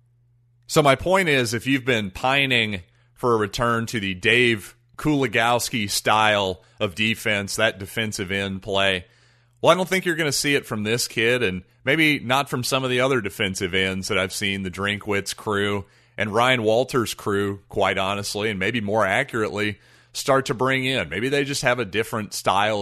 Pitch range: 100-125 Hz